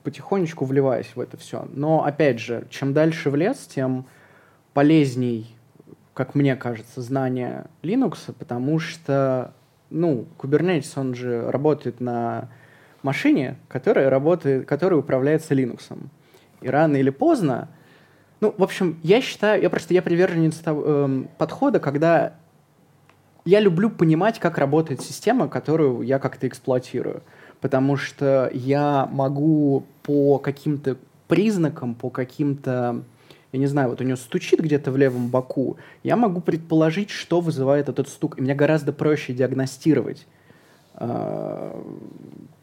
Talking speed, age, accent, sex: 130 wpm, 20-39, native, male